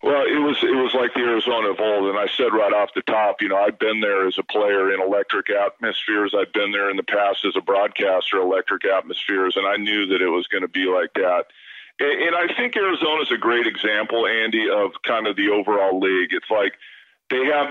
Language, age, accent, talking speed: English, 40-59, American, 235 wpm